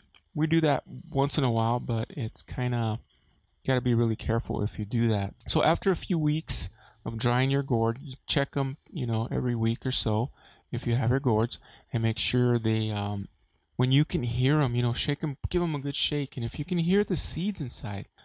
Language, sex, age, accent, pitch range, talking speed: English, male, 20-39, American, 105-130 Hz, 225 wpm